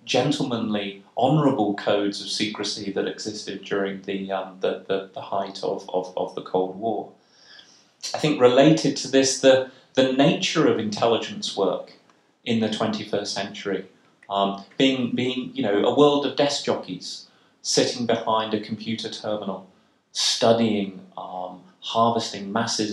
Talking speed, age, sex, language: 140 wpm, 30-49, male, English